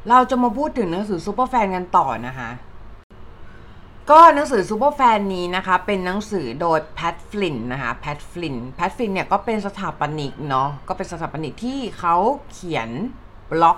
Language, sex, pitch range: Thai, female, 155-235 Hz